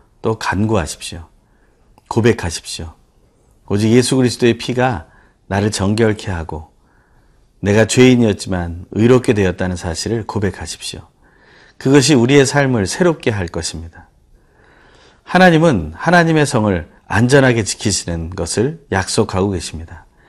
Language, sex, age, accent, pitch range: Korean, male, 40-59, native, 95-130 Hz